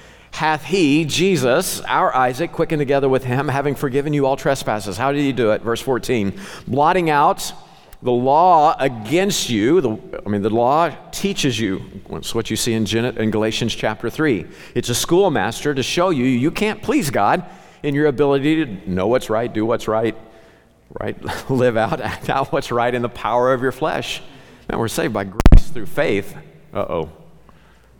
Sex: male